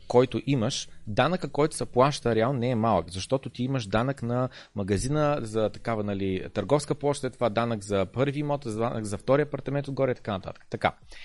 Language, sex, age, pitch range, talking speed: Bulgarian, male, 30-49, 110-150 Hz, 185 wpm